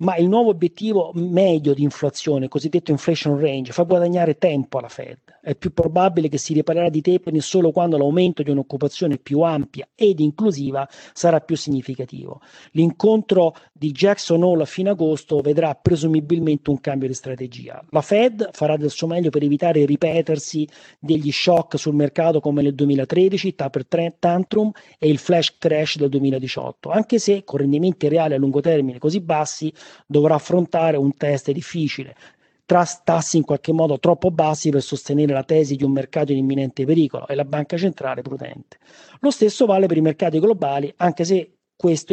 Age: 40-59